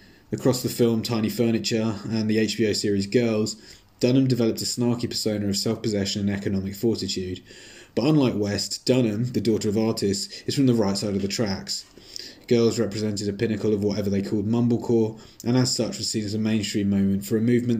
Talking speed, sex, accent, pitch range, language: 190 wpm, male, British, 100-115 Hz, English